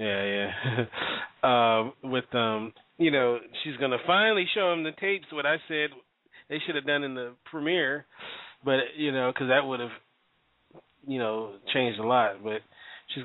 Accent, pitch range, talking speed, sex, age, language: American, 110-130 Hz, 175 wpm, male, 30-49, English